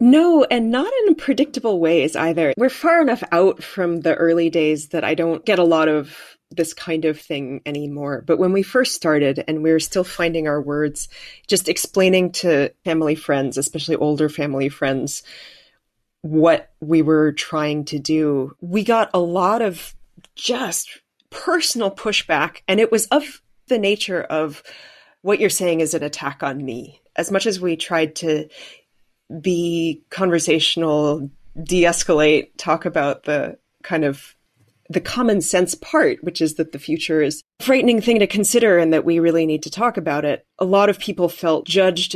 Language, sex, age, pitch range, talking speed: English, female, 30-49, 150-180 Hz, 175 wpm